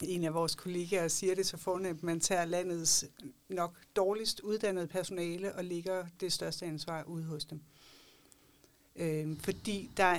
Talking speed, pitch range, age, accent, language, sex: 160 wpm, 165-190 Hz, 60-79, native, Danish, female